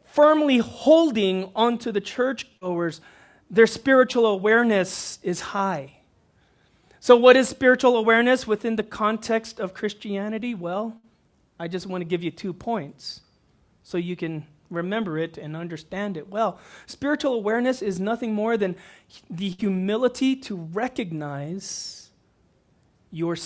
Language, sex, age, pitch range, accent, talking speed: English, male, 30-49, 180-240 Hz, American, 125 wpm